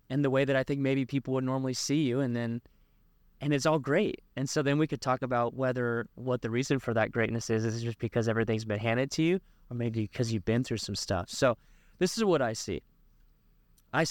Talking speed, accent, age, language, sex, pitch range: 240 wpm, American, 20-39, English, male, 120-150 Hz